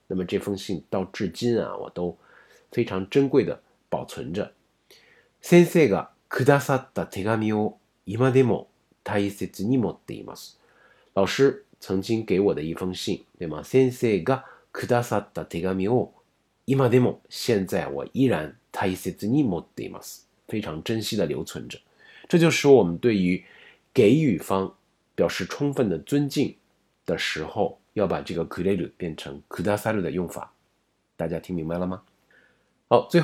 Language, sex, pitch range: Chinese, male, 90-125 Hz